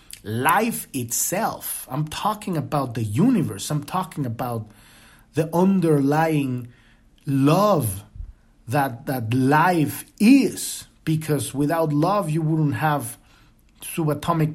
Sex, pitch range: male, 120-170 Hz